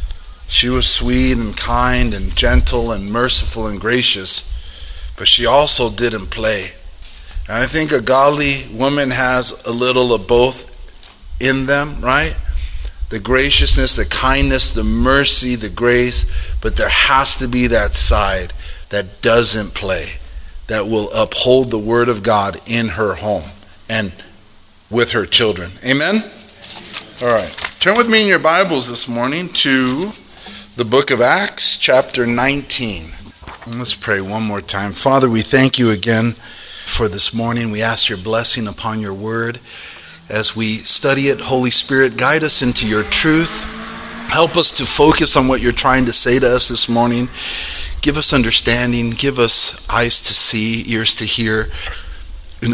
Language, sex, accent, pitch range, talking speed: English, male, American, 100-125 Hz, 155 wpm